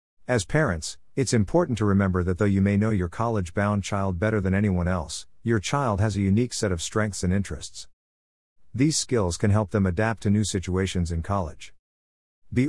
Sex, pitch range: male, 90-115 Hz